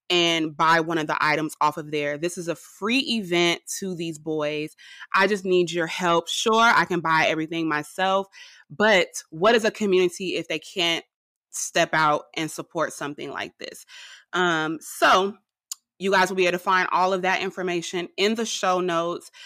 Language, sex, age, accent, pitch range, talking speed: English, female, 20-39, American, 165-205 Hz, 185 wpm